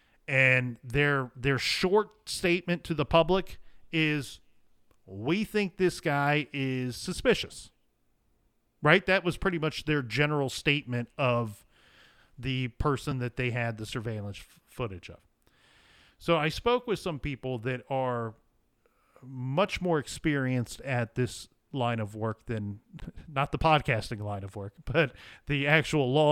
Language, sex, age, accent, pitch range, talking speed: English, male, 40-59, American, 120-155 Hz, 140 wpm